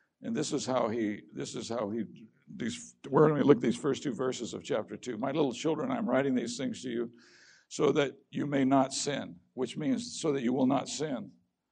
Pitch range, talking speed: 130-165 Hz, 230 wpm